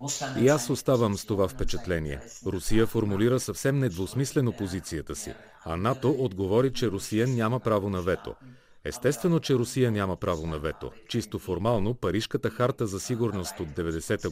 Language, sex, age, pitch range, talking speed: Bulgarian, male, 40-59, 100-130 Hz, 150 wpm